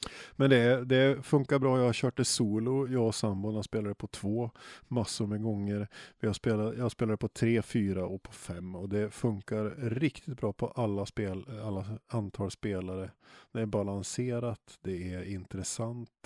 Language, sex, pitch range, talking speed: Swedish, male, 100-120 Hz, 160 wpm